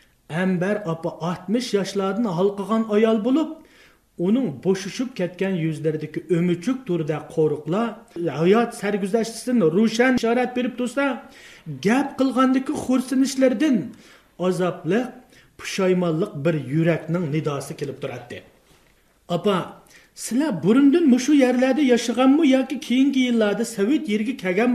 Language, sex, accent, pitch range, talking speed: English, male, Turkish, 175-255 Hz, 105 wpm